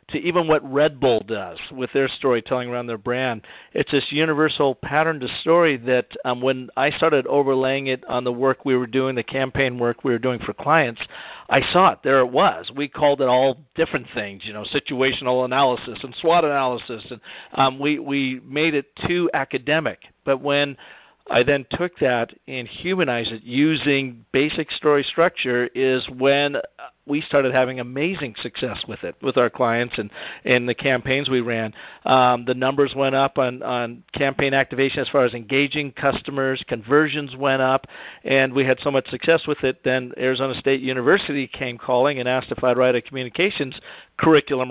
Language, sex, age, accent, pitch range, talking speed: English, male, 50-69, American, 125-145 Hz, 185 wpm